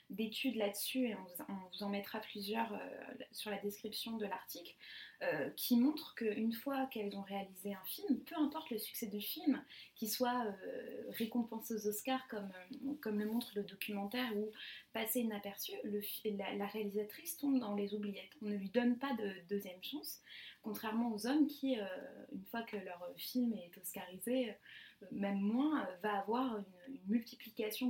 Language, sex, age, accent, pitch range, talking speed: French, female, 20-39, French, 205-250 Hz, 155 wpm